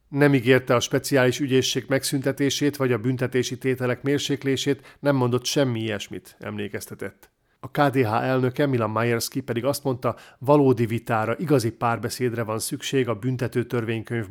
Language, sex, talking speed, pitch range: Hungarian, male, 135 wpm, 115-130 Hz